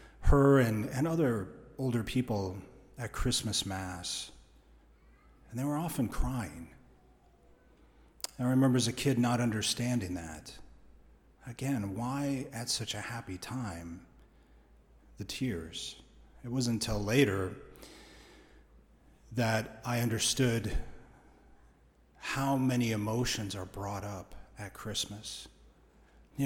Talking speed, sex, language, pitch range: 105 wpm, male, English, 85-120 Hz